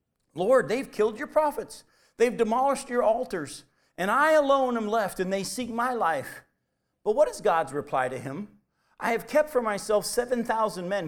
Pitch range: 145-210 Hz